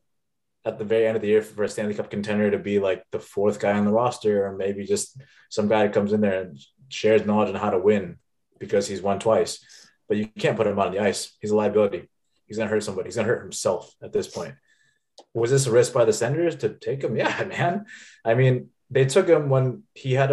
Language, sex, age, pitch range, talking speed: English, male, 20-39, 105-165 Hz, 250 wpm